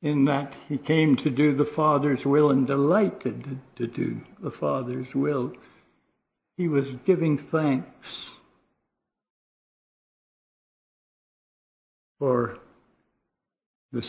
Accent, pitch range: American, 120-140 Hz